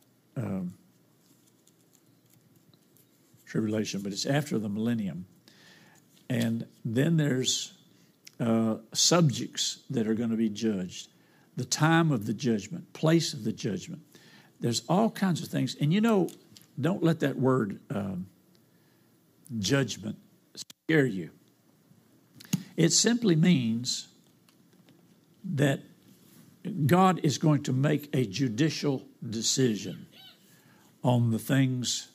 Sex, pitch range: male, 115-160 Hz